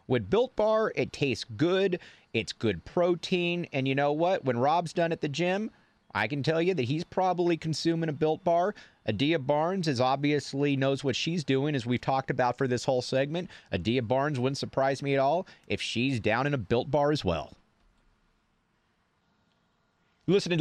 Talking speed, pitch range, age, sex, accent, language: 185 wpm, 100-155 Hz, 30-49, male, American, English